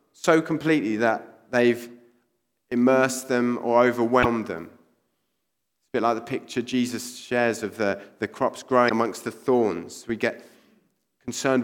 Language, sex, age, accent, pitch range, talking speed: English, male, 30-49, British, 115-135 Hz, 145 wpm